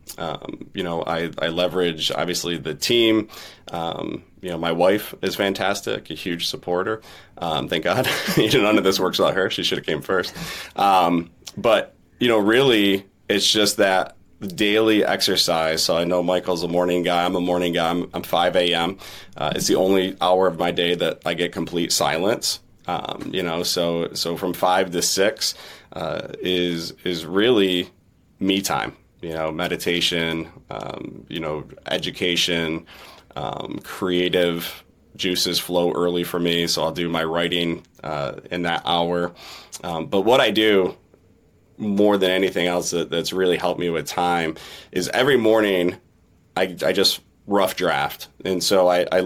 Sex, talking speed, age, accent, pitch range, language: male, 165 wpm, 30-49, American, 85-95 Hz, English